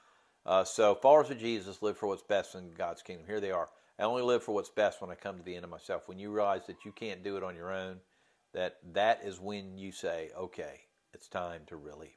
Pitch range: 95-110 Hz